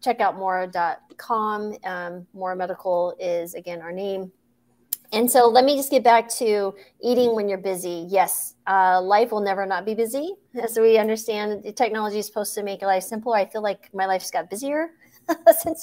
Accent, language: American, English